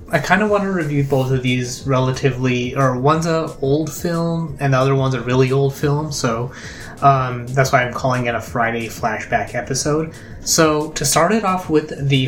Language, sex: English, male